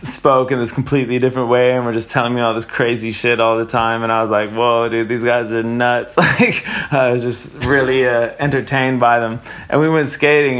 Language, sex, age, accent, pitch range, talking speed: English, male, 20-39, American, 120-145 Hz, 240 wpm